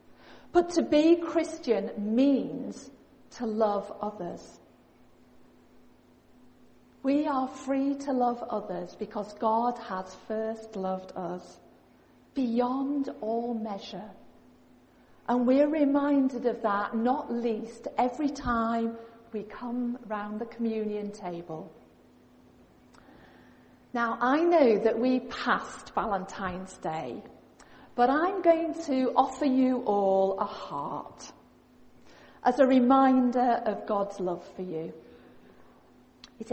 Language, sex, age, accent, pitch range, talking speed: English, female, 40-59, British, 210-285 Hz, 105 wpm